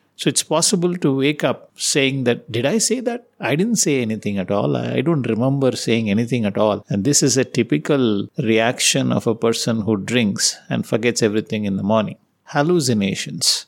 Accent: Indian